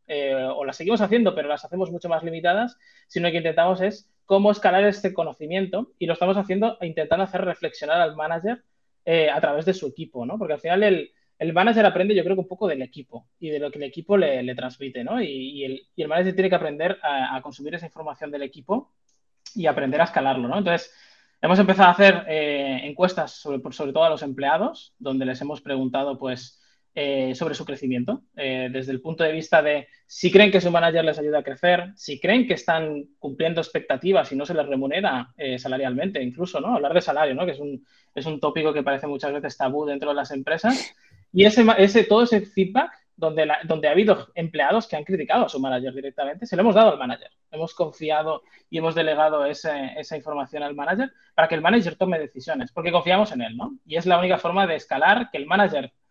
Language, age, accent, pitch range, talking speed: Spanish, 20-39, Spanish, 145-190 Hz, 225 wpm